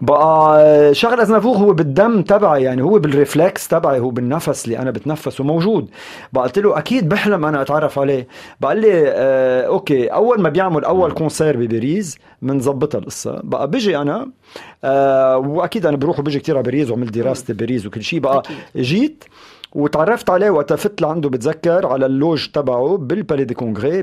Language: Arabic